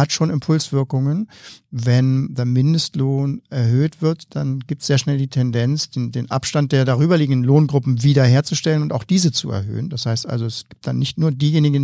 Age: 50-69